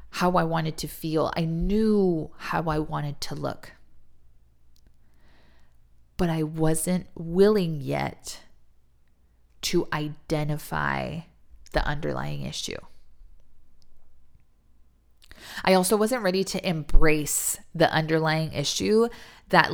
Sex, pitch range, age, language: female, 140-185 Hz, 20-39, English